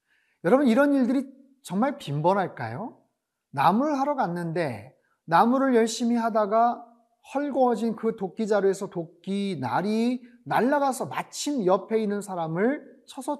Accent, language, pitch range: native, Korean, 185-255 Hz